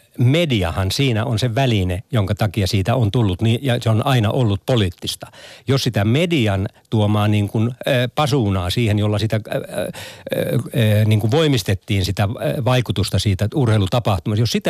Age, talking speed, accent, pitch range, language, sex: 60-79, 165 wpm, native, 100-125 Hz, Finnish, male